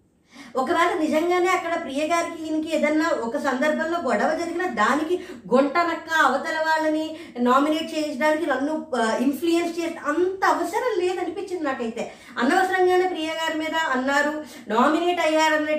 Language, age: Telugu, 20-39